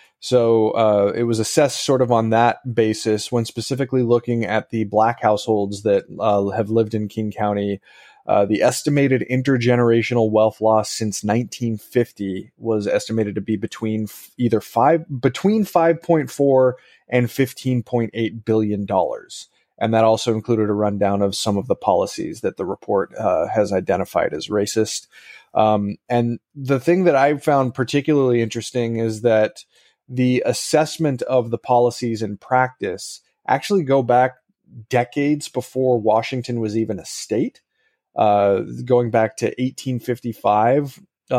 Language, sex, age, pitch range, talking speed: English, male, 30-49, 110-130 Hz, 140 wpm